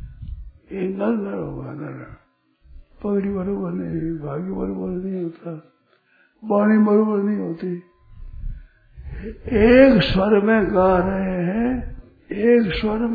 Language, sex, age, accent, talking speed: Hindi, male, 60-79, native, 85 wpm